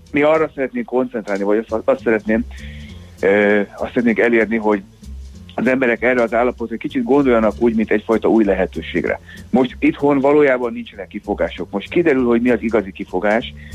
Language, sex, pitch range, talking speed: Hungarian, male, 95-120 Hz, 160 wpm